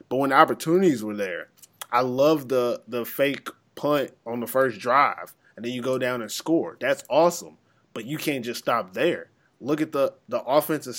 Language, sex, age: English, male, 20-39